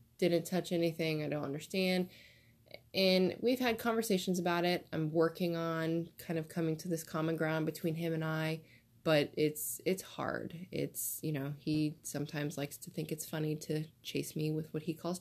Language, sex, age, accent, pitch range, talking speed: English, female, 20-39, American, 160-190 Hz, 185 wpm